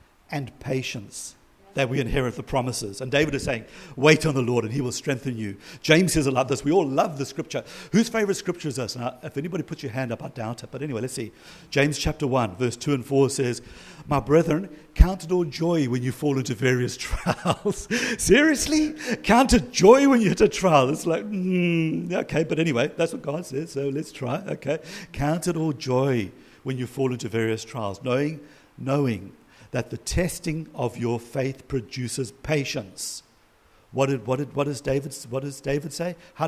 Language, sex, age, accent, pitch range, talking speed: English, male, 50-69, British, 125-155 Hz, 205 wpm